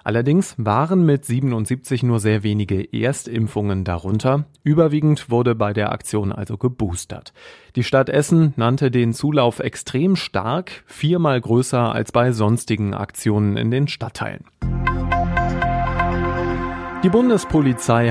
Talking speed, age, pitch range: 115 wpm, 30-49, 110-145 Hz